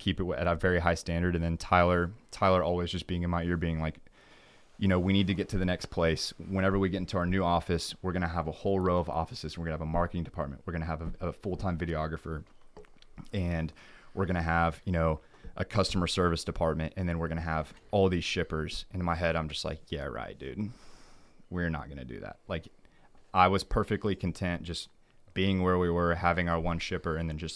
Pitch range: 80-95 Hz